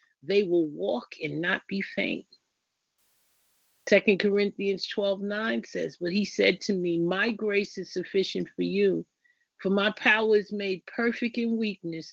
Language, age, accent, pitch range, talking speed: English, 50-69, American, 170-210 Hz, 155 wpm